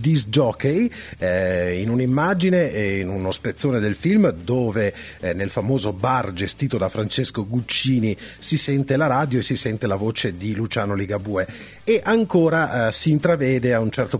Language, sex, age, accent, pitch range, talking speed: Italian, male, 30-49, native, 110-150 Hz, 175 wpm